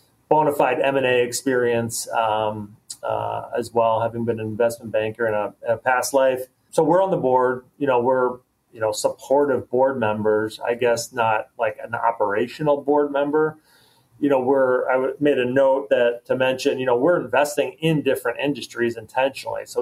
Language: English